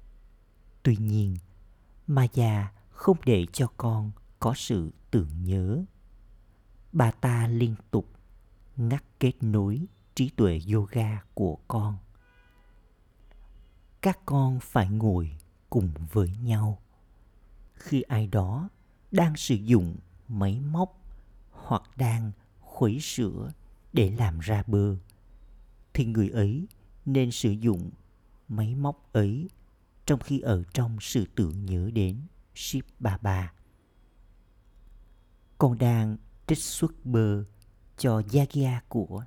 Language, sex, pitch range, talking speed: Vietnamese, male, 100-120 Hz, 110 wpm